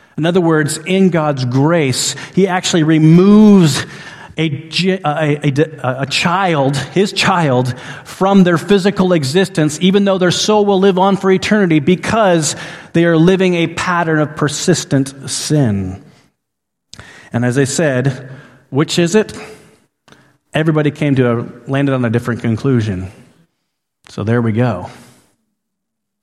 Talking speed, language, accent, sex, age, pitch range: 125 wpm, English, American, male, 40-59, 125-170 Hz